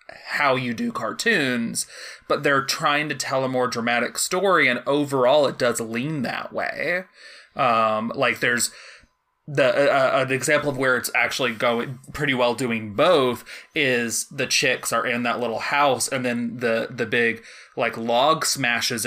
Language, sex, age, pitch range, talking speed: English, male, 20-39, 115-140 Hz, 160 wpm